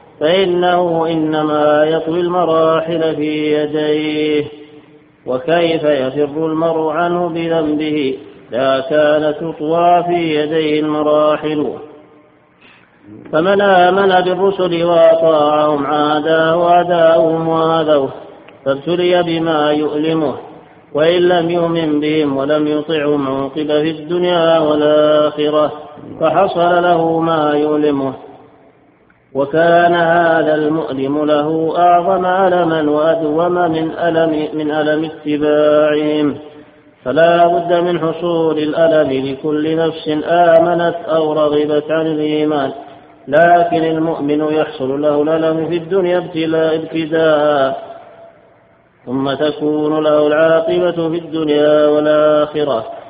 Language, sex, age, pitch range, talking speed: Arabic, male, 50-69, 150-165 Hz, 90 wpm